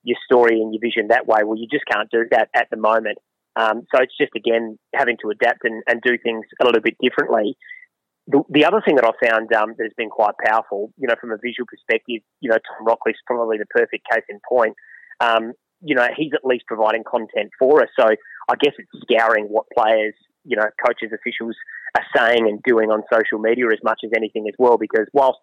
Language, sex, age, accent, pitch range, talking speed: English, male, 30-49, Australian, 115-130 Hz, 230 wpm